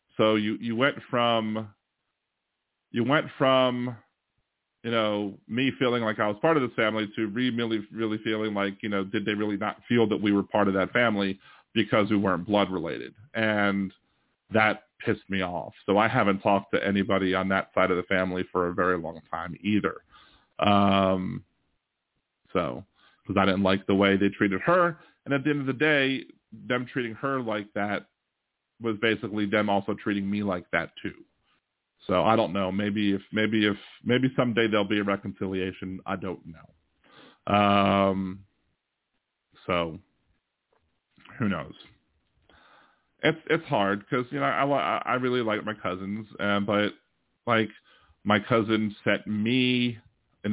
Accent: American